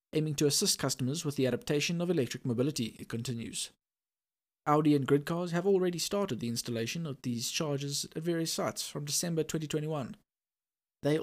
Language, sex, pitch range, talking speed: English, male, 125-165 Hz, 165 wpm